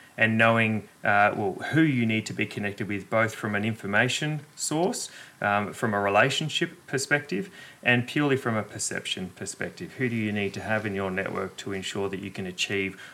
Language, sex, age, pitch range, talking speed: English, male, 30-49, 100-125 Hz, 190 wpm